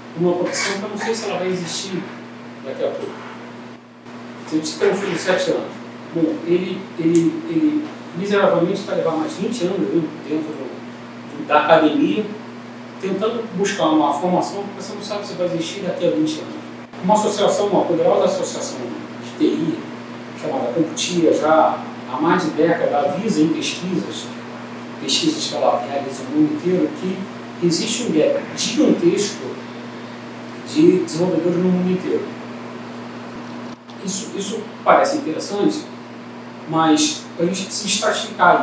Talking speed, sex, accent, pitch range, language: 145 wpm, male, Brazilian, 155-215 Hz, Portuguese